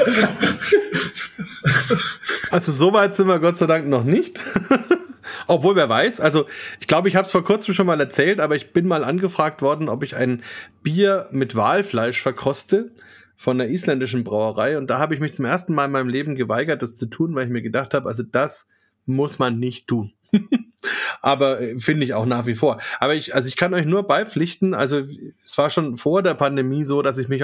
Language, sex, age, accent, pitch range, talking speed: German, male, 30-49, German, 125-160 Hz, 200 wpm